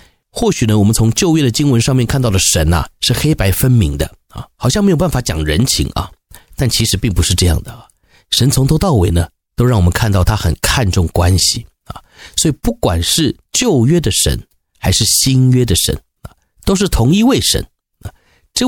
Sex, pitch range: male, 85-115 Hz